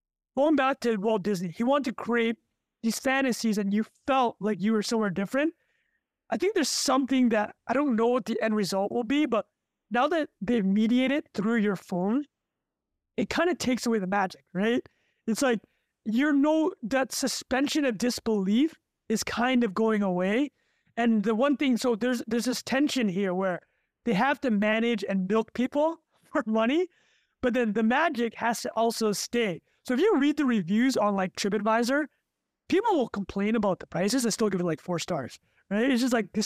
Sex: male